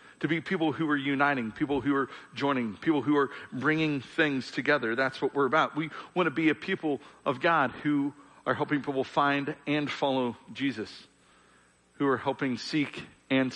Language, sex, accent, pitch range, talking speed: English, male, American, 130-165 Hz, 180 wpm